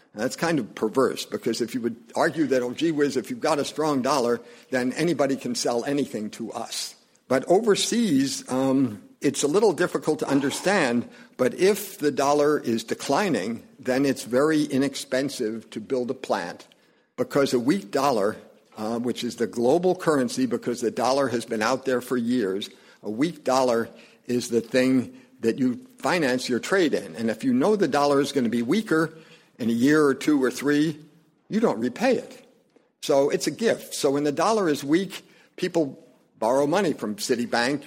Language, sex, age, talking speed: English, male, 50-69, 185 wpm